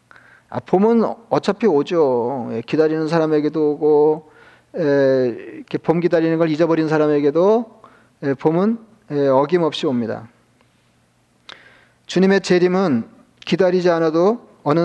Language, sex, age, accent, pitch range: Korean, male, 40-59, native, 145-185 Hz